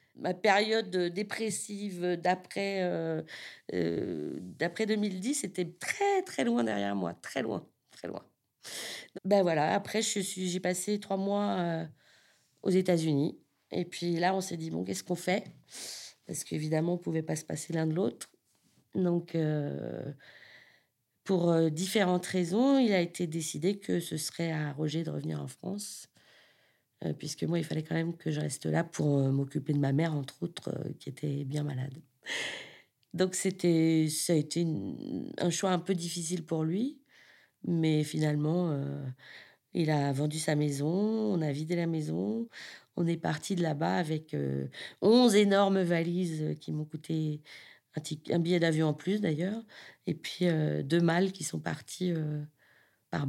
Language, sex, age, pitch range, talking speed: French, female, 40-59, 155-185 Hz, 170 wpm